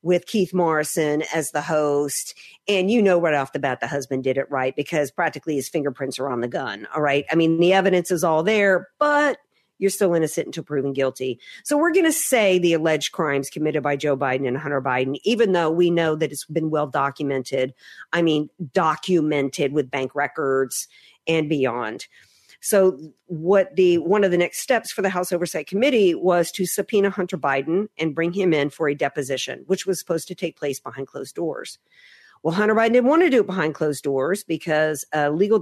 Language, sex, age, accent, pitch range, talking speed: English, female, 50-69, American, 145-190 Hz, 205 wpm